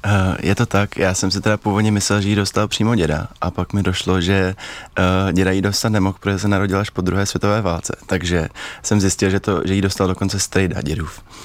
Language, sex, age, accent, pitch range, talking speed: Czech, male, 20-39, native, 85-95 Hz, 230 wpm